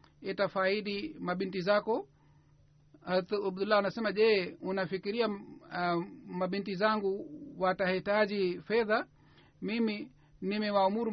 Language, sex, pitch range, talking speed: Swahili, male, 155-205 Hz, 80 wpm